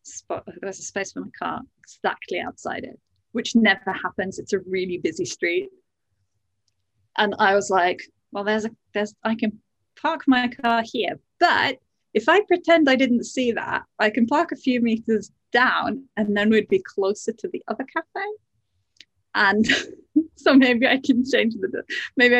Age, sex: 30-49, female